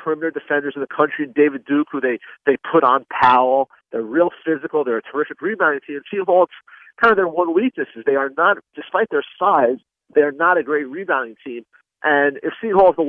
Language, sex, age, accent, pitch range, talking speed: English, male, 40-59, American, 145-200 Hz, 200 wpm